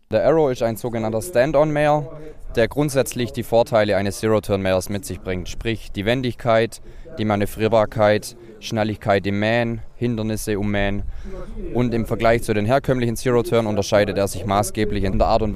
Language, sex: German, male